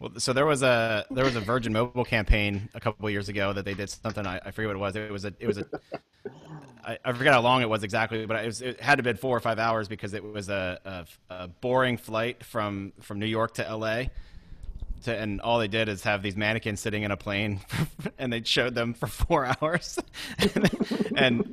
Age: 30-49